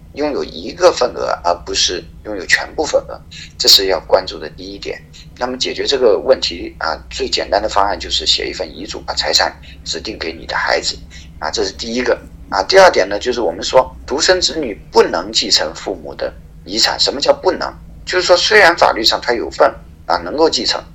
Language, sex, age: Chinese, male, 50-69